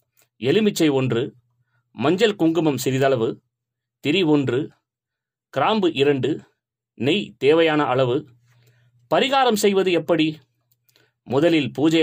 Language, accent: Tamil, native